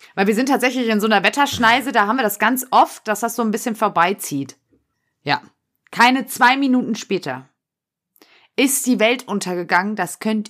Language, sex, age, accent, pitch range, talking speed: German, female, 30-49, German, 200-245 Hz, 175 wpm